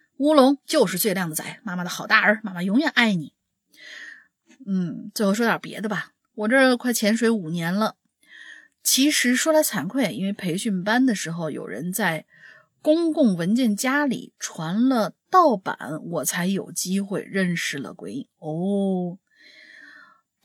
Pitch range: 180-245 Hz